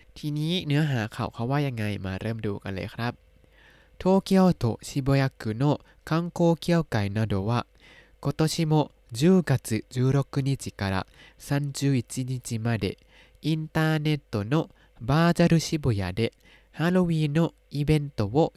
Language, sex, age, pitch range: Thai, male, 20-39, 110-155 Hz